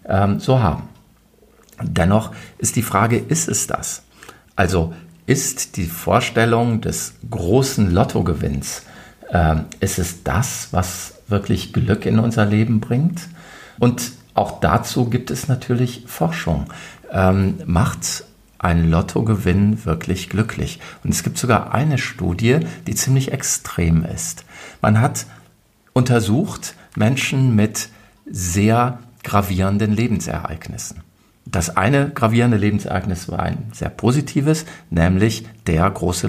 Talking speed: 115 wpm